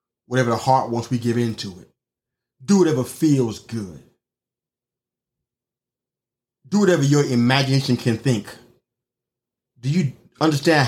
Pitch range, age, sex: 125-170 Hz, 30-49, male